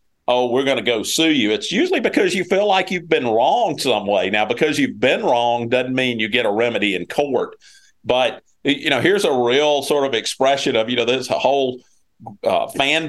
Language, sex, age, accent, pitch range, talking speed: English, male, 50-69, American, 105-160 Hz, 220 wpm